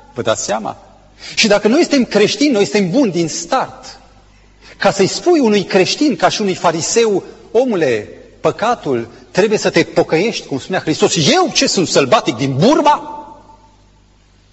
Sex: male